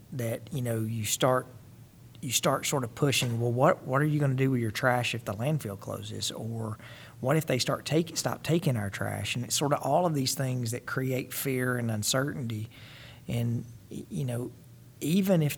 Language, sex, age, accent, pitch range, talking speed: English, male, 40-59, American, 115-130 Hz, 205 wpm